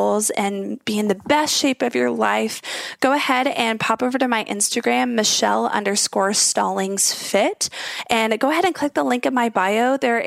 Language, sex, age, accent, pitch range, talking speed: English, female, 20-39, American, 215-270 Hz, 185 wpm